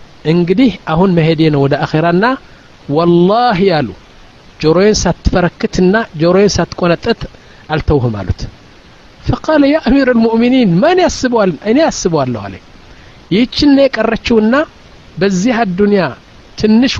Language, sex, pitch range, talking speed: Amharic, male, 155-240 Hz, 85 wpm